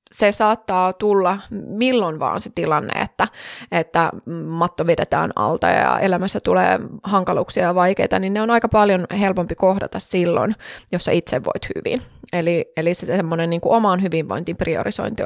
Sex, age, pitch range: female, 20-39, 165-205 Hz